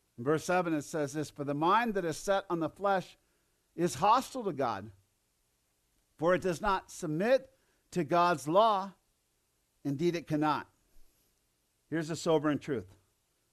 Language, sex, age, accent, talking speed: English, male, 50-69, American, 150 wpm